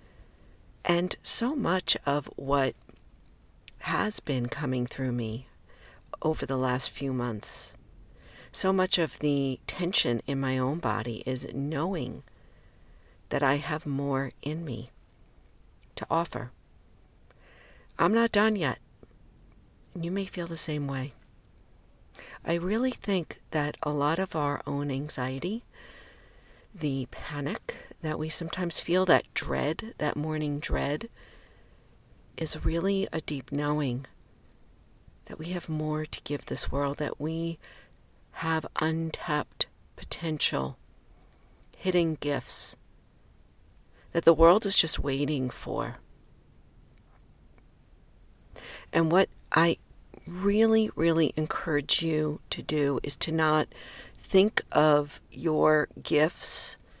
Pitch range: 130-165 Hz